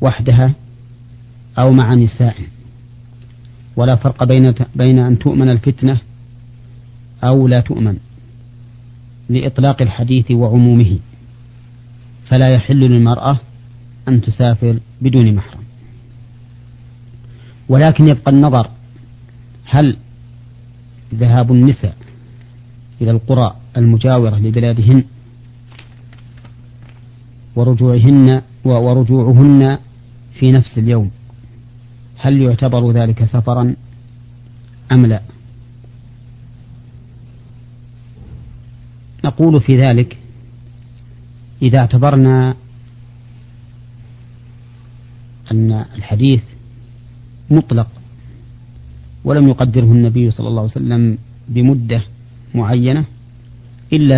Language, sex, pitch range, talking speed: Arabic, male, 120-125 Hz, 70 wpm